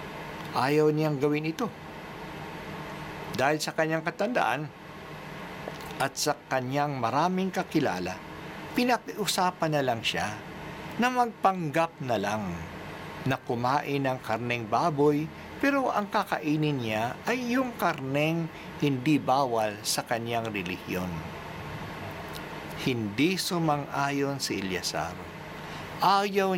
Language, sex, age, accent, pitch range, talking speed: Filipino, male, 60-79, native, 140-175 Hz, 95 wpm